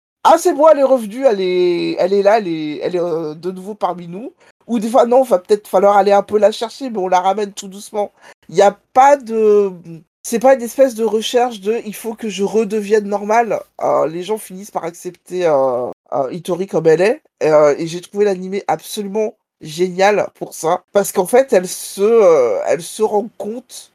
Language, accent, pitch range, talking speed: French, French, 175-230 Hz, 225 wpm